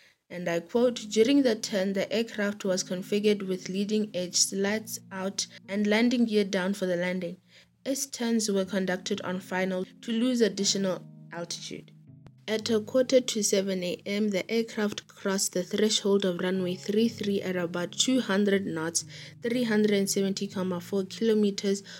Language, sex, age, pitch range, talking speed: English, female, 20-39, 185-215 Hz, 140 wpm